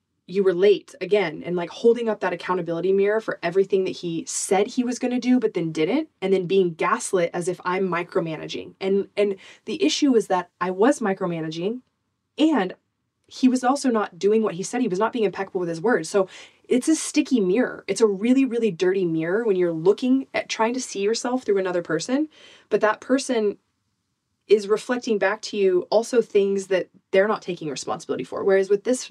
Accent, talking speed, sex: American, 205 wpm, female